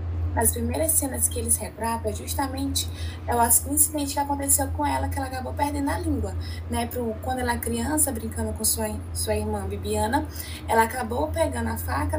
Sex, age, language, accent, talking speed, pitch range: female, 10-29, Portuguese, Brazilian, 175 wpm, 80-95 Hz